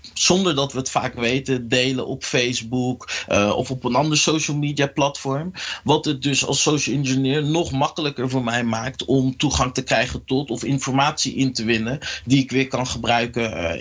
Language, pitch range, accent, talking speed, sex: Dutch, 125-150 Hz, Dutch, 190 wpm, male